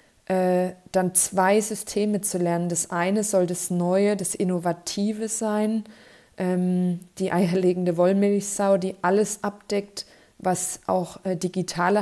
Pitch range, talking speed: 180-205 Hz, 110 wpm